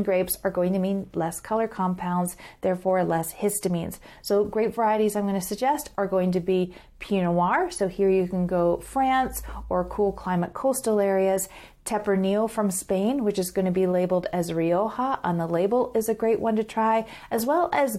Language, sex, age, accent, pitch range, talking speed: English, female, 40-59, American, 185-225 Hz, 195 wpm